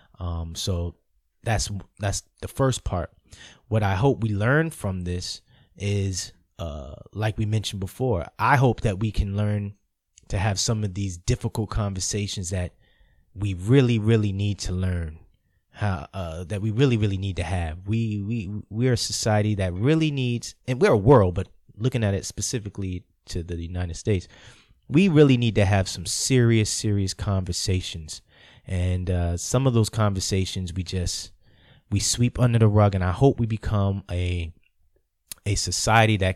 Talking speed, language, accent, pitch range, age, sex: 170 wpm, English, American, 90-115 Hz, 20-39, male